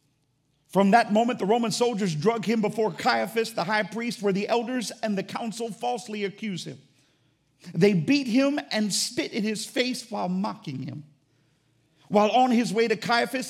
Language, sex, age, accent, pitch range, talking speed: English, male, 50-69, American, 180-235 Hz, 175 wpm